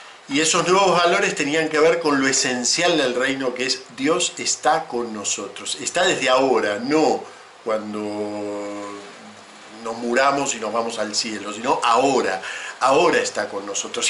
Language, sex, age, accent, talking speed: Spanish, male, 50-69, Argentinian, 155 wpm